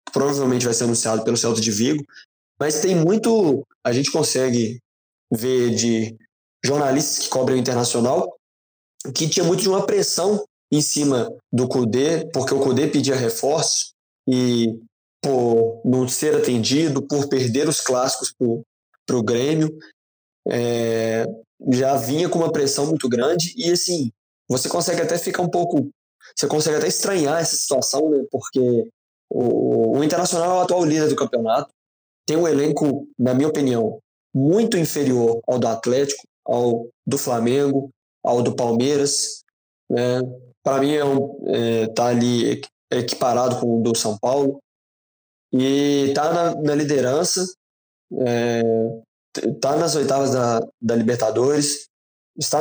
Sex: male